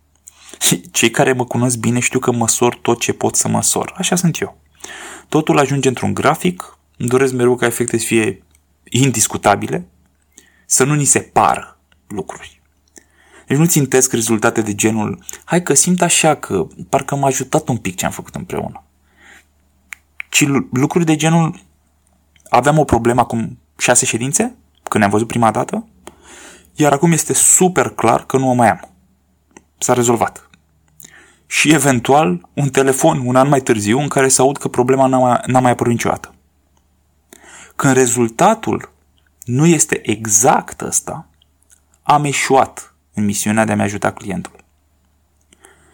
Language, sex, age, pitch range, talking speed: Romanian, male, 20-39, 95-140 Hz, 150 wpm